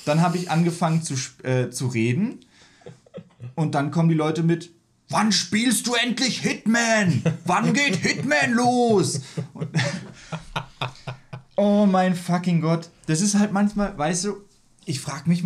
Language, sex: German, male